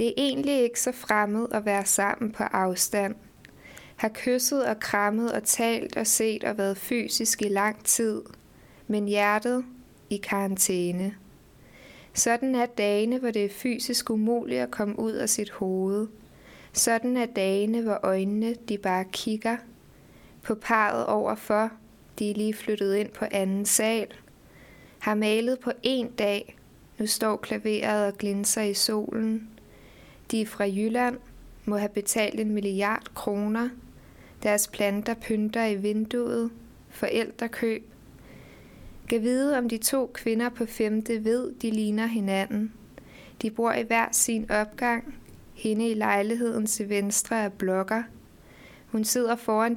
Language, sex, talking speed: Danish, female, 140 wpm